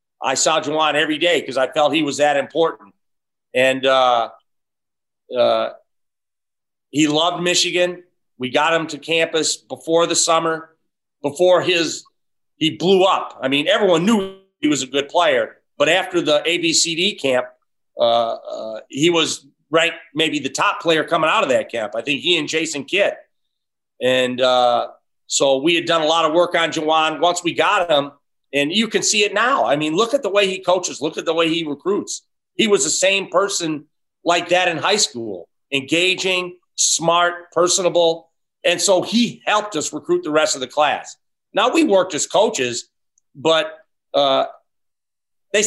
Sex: male